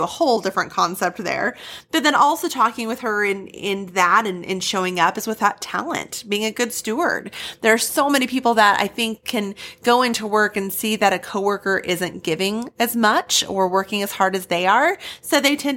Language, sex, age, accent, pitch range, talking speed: English, female, 30-49, American, 185-235 Hz, 215 wpm